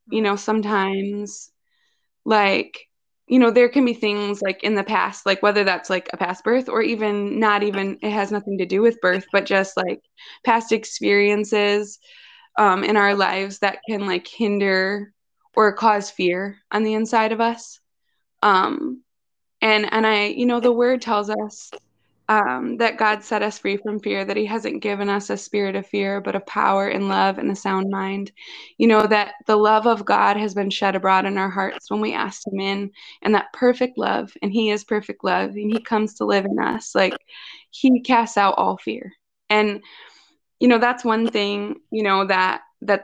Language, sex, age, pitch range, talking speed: English, female, 20-39, 200-225 Hz, 195 wpm